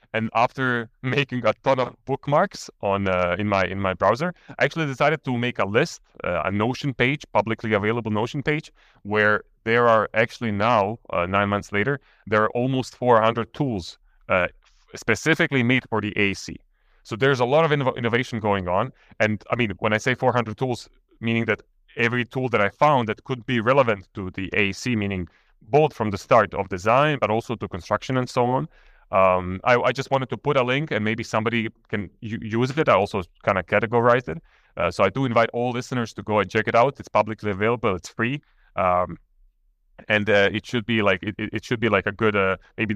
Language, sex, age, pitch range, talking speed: German, male, 30-49, 100-125 Hz, 210 wpm